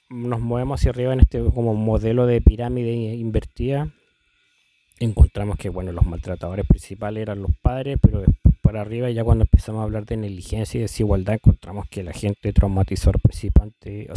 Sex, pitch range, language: male, 95-115 Hz, Spanish